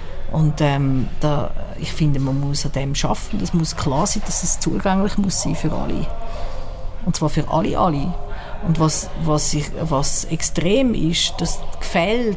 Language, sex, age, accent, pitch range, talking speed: German, female, 50-69, Austrian, 155-190 Hz, 175 wpm